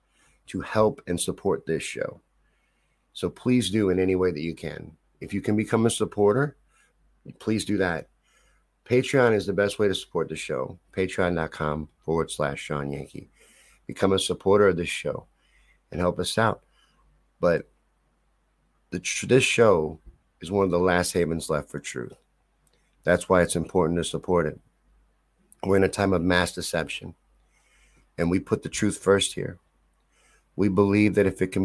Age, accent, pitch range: 50-69, American, 85-105 Hz